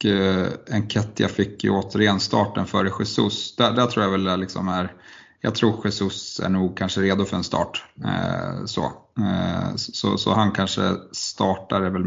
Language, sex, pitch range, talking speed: Swedish, male, 95-105 Hz, 185 wpm